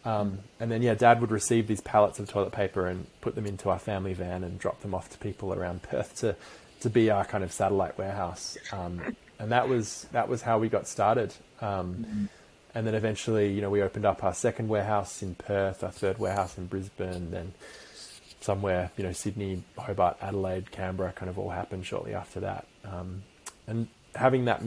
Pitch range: 95-105 Hz